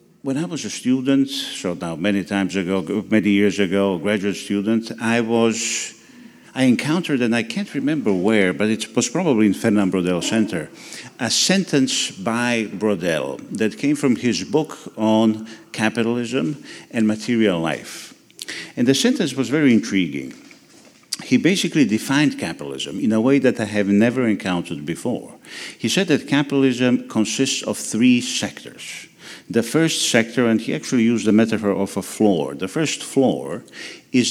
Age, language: 50-69, English